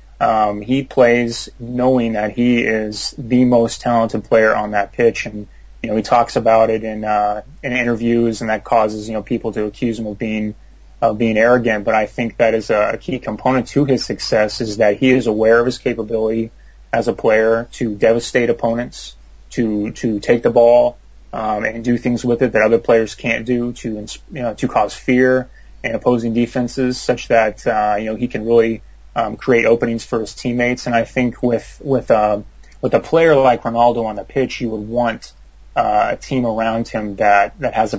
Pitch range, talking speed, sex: 105-120 Hz, 205 wpm, male